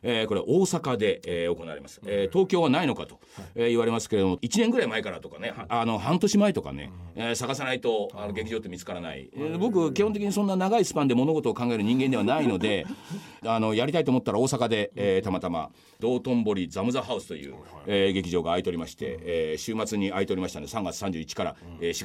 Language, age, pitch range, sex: Japanese, 40-59, 95-145 Hz, male